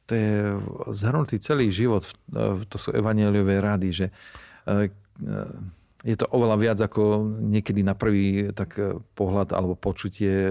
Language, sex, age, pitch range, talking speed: Slovak, male, 40-59, 95-105 Hz, 125 wpm